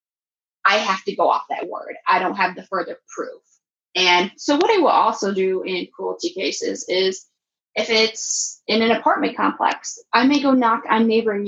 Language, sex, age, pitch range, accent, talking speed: English, female, 20-39, 200-270 Hz, American, 190 wpm